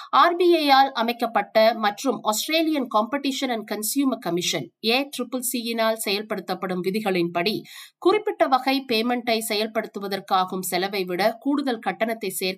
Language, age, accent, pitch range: Tamil, 50-69, native, 195-265 Hz